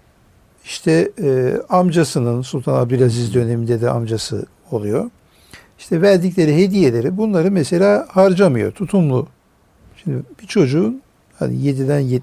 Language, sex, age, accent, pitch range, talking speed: Turkish, male, 60-79, native, 130-185 Hz, 105 wpm